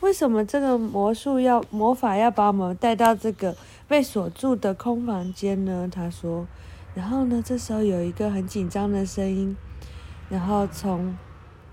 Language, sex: Chinese, female